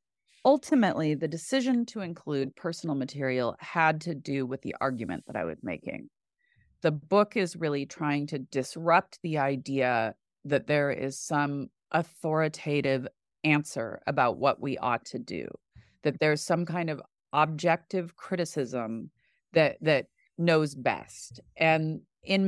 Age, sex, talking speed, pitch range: 30-49, female, 135 wpm, 135-175 Hz